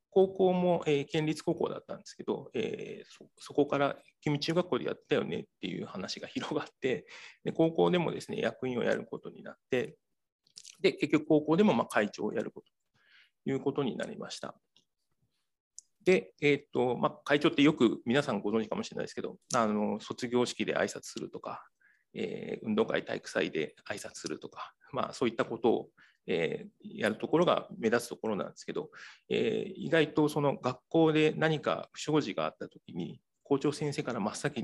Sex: male